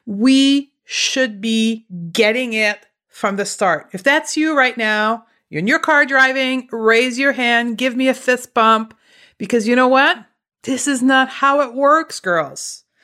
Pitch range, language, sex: 215-265 Hz, English, female